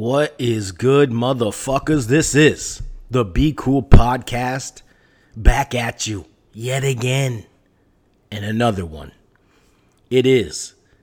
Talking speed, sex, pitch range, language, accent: 110 wpm, male, 100-125 Hz, English, American